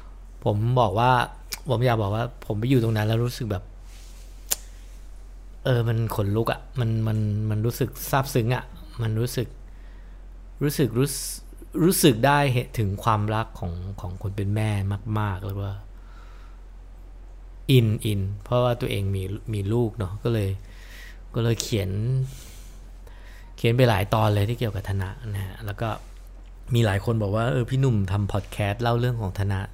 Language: English